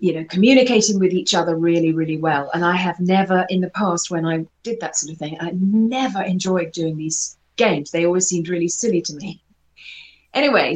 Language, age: English, 30-49